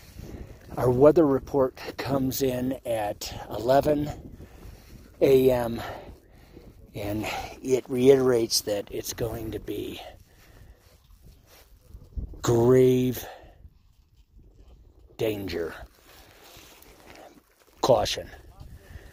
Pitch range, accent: 90-130 Hz, American